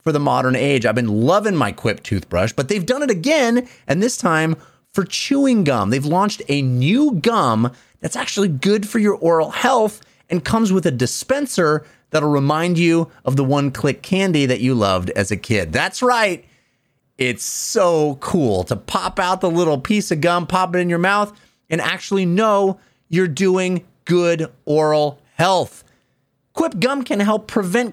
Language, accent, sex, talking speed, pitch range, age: English, American, male, 175 wpm, 140-205 Hz, 30-49